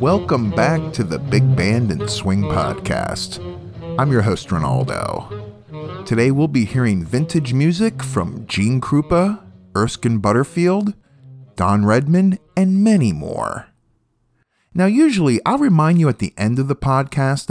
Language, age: English, 40-59